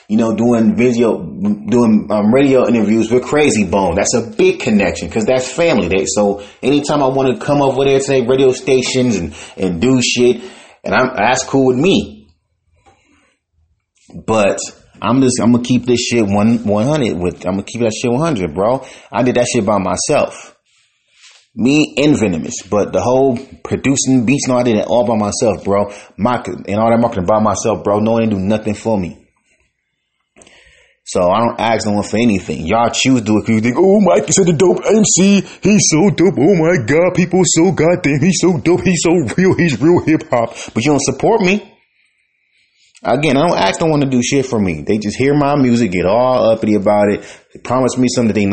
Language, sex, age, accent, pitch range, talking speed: English, male, 30-49, American, 105-140 Hz, 210 wpm